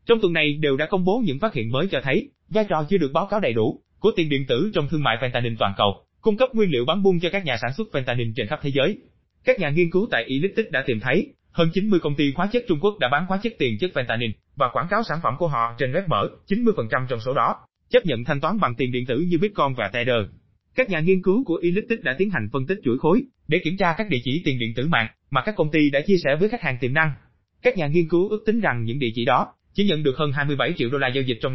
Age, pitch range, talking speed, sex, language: 20-39, 130-180 Hz, 295 wpm, male, Vietnamese